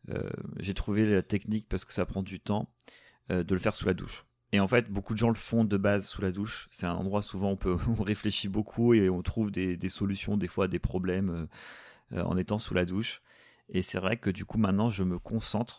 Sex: male